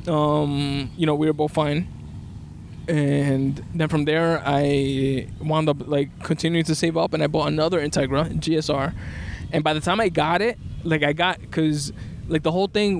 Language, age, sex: English, 20-39, male